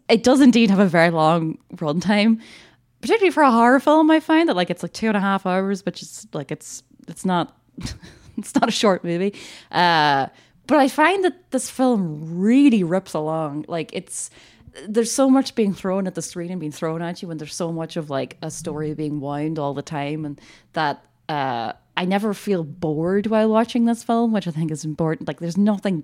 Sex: female